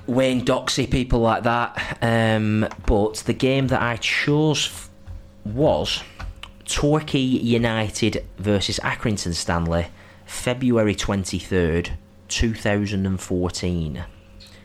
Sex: male